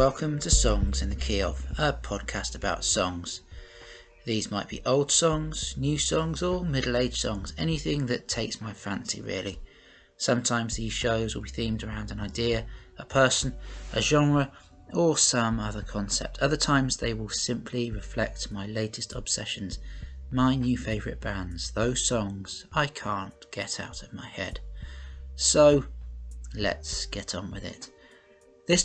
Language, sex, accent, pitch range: English, male, British, 100-125 Hz